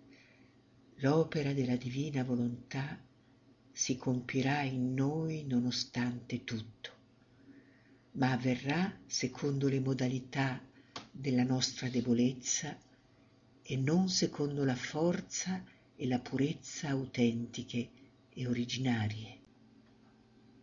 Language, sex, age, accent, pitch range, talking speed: Italian, female, 50-69, native, 120-135 Hz, 85 wpm